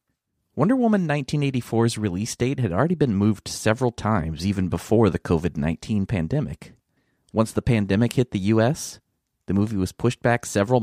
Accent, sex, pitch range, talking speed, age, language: American, male, 100-125 Hz, 155 wpm, 30-49, English